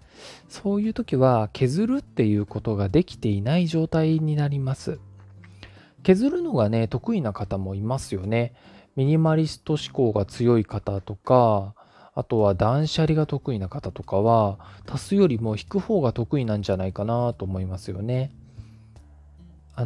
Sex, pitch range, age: male, 105-155 Hz, 20-39